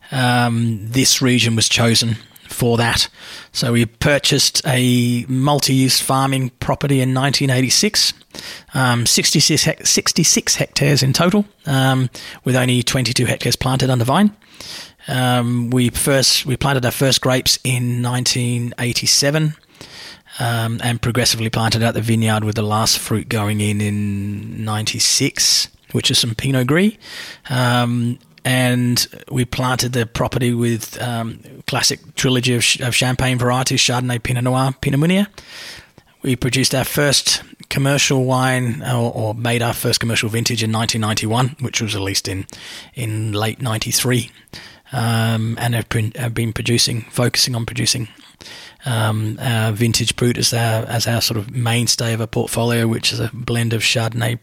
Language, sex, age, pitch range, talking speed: English, male, 30-49, 115-130 Hz, 150 wpm